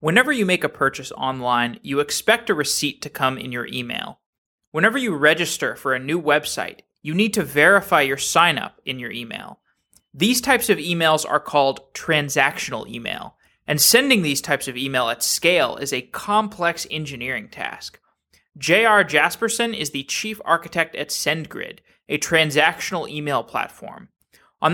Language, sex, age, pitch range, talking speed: English, male, 20-39, 135-185 Hz, 160 wpm